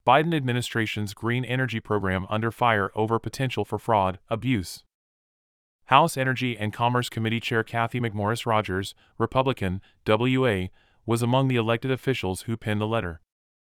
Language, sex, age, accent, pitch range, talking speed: English, male, 30-49, American, 100-120 Hz, 135 wpm